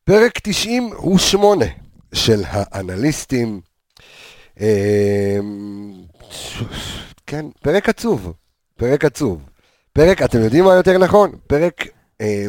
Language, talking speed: Hebrew, 90 wpm